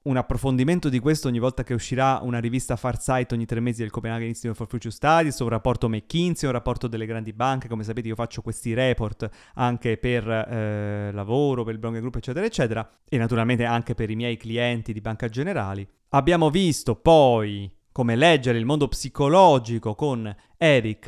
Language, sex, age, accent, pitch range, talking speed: Italian, male, 30-49, native, 115-135 Hz, 180 wpm